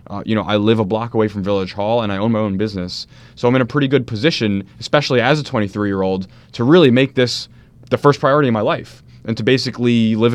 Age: 20-39